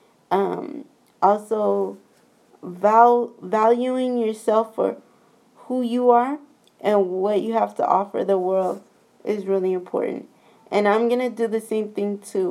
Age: 20-39